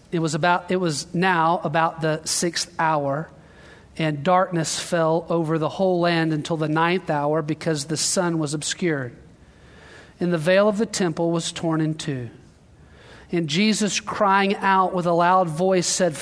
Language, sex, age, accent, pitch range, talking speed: English, male, 40-59, American, 160-195 Hz, 165 wpm